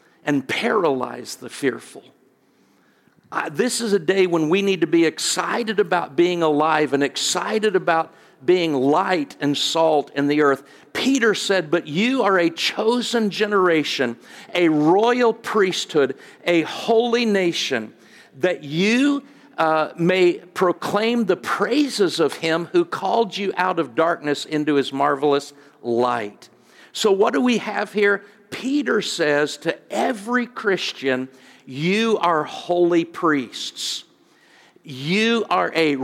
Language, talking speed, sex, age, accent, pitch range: English, 130 wpm, male, 50-69, American, 150-195 Hz